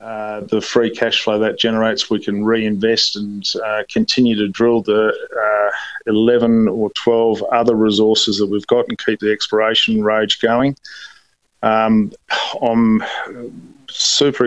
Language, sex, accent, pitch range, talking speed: English, male, Australian, 105-115 Hz, 140 wpm